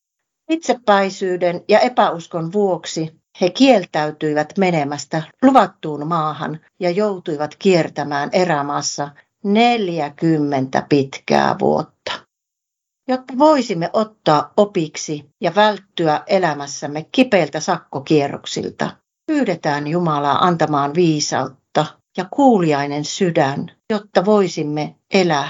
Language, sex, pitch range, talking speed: Finnish, female, 150-205 Hz, 80 wpm